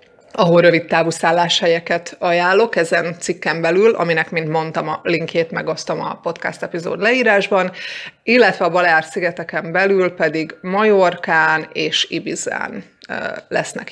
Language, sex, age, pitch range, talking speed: Hungarian, female, 30-49, 165-200 Hz, 120 wpm